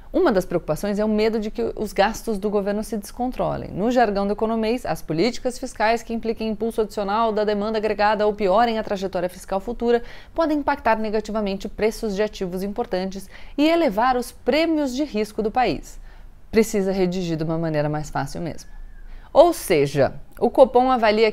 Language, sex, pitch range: Portuguese, female, 185-240 Hz